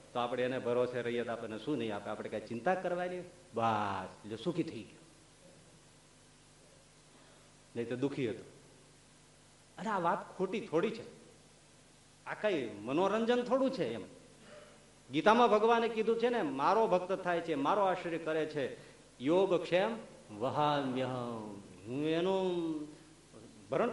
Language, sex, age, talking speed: Gujarati, male, 50-69, 135 wpm